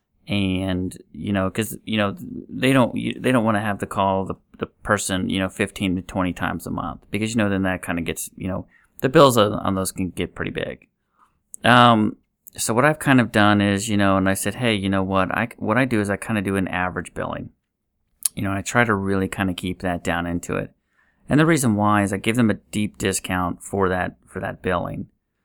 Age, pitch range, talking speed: 30-49, 95-110 Hz, 240 wpm